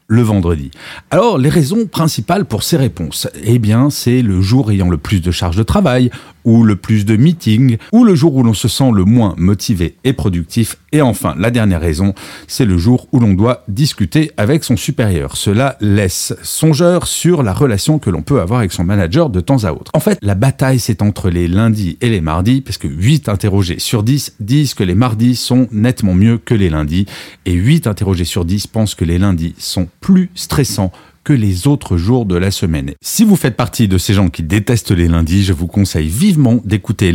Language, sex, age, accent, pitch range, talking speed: French, male, 40-59, French, 95-135 Hz, 215 wpm